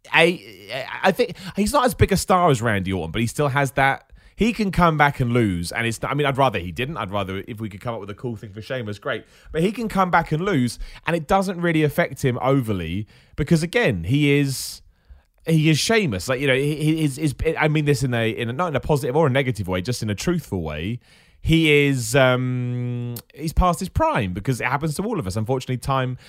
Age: 30-49